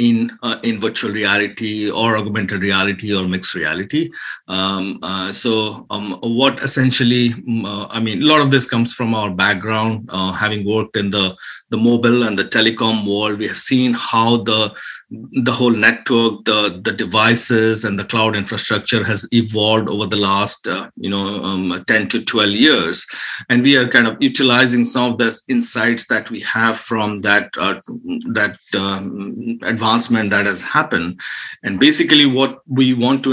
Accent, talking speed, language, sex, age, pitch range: Indian, 170 wpm, English, male, 50-69, 105-125 Hz